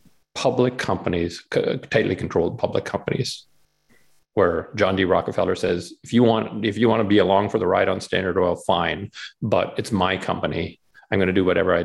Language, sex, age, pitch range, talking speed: English, male, 40-59, 95-115 Hz, 185 wpm